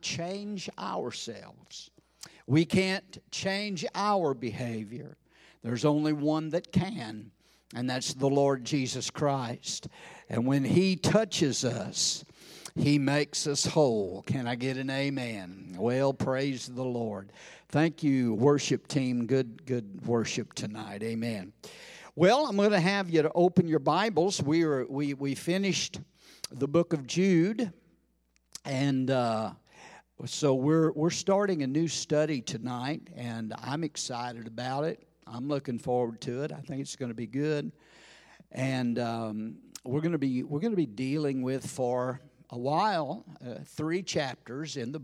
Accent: American